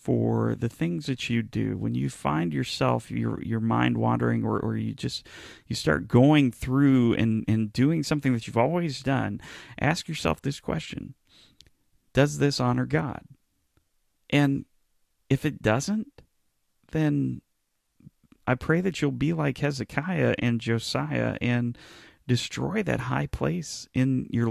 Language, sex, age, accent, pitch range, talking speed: English, male, 40-59, American, 110-140 Hz, 145 wpm